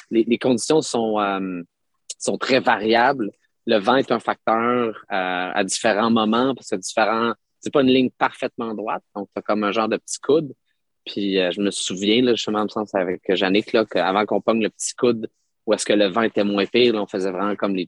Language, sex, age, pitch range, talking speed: French, male, 30-49, 100-120 Hz, 220 wpm